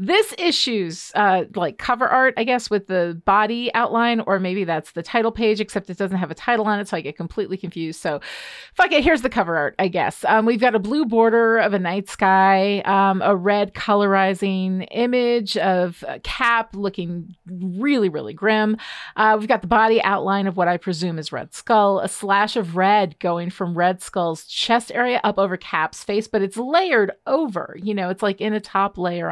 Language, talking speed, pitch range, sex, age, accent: English, 205 wpm, 185-240 Hz, female, 40-59, American